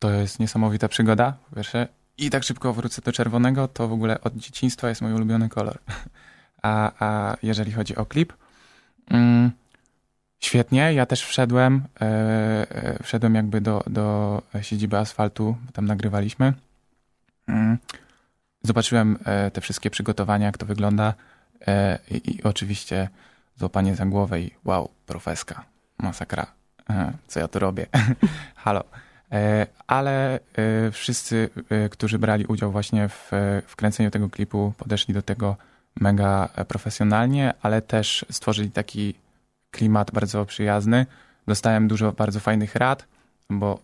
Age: 20-39